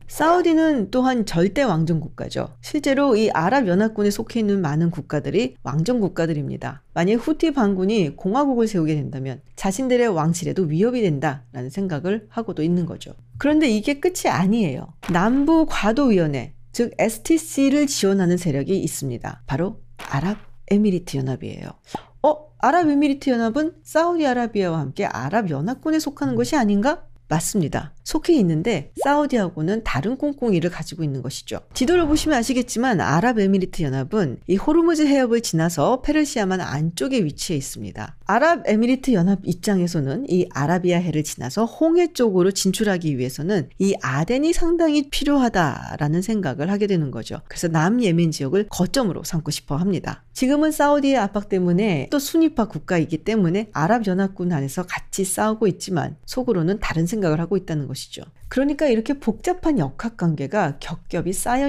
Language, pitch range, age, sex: Korean, 160-255 Hz, 40-59, female